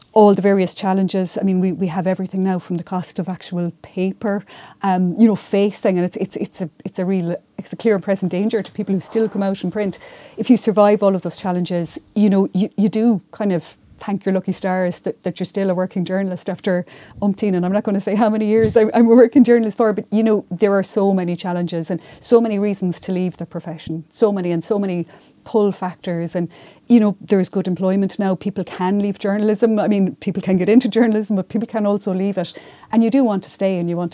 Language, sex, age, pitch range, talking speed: English, female, 30-49, 180-210 Hz, 250 wpm